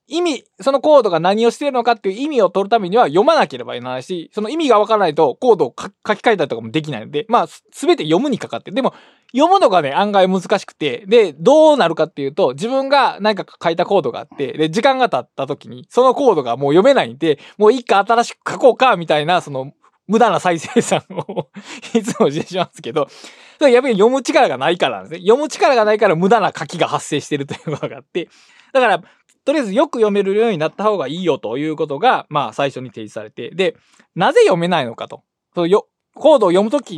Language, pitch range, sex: Japanese, 160-265 Hz, male